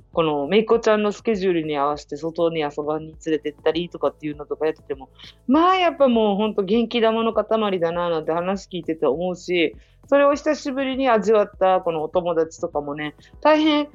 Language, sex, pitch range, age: Japanese, female, 160-255 Hz, 40-59